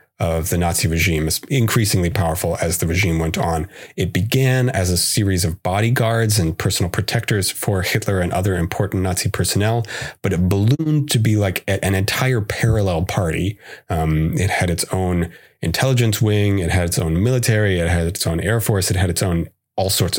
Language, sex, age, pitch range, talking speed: English, male, 30-49, 90-115 Hz, 185 wpm